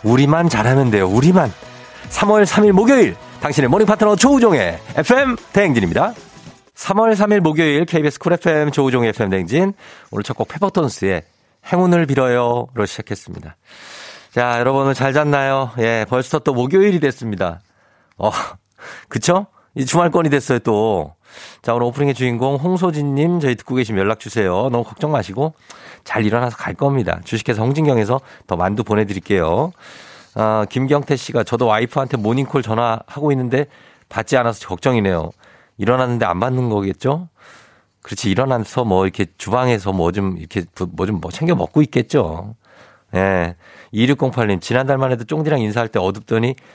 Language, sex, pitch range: Korean, male, 105-145 Hz